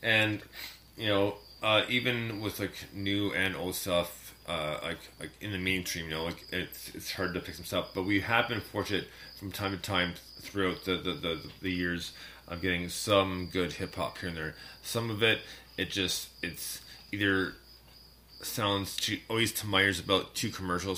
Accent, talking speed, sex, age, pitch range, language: American, 190 wpm, male, 30-49, 85-100 Hz, English